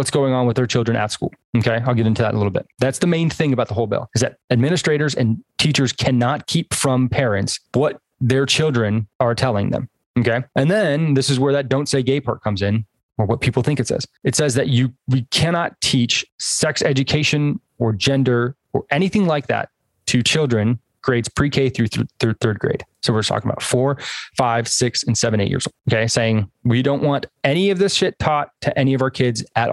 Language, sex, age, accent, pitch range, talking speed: English, male, 20-39, American, 115-140 Hz, 220 wpm